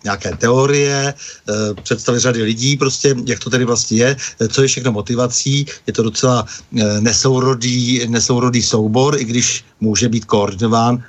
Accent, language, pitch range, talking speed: native, Czech, 105-125 Hz, 155 wpm